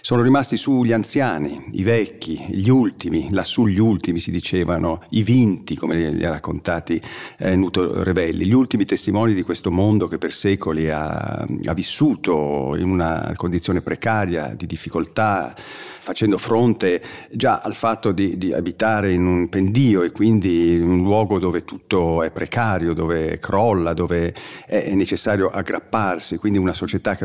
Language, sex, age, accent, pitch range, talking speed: Italian, male, 50-69, native, 85-110 Hz, 155 wpm